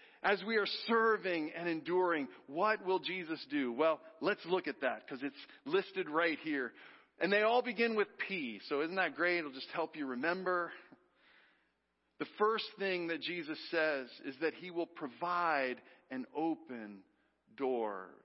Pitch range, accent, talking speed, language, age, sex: 140-205 Hz, American, 160 wpm, English, 40-59, male